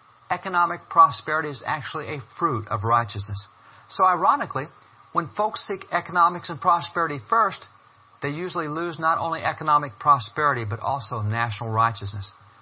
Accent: American